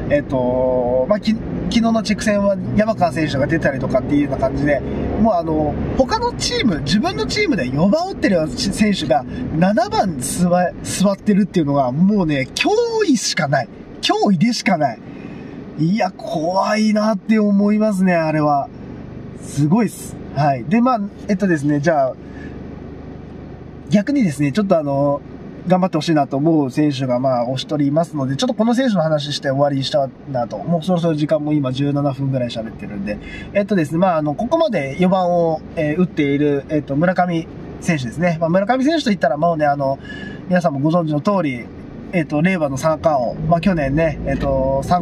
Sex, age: male, 20-39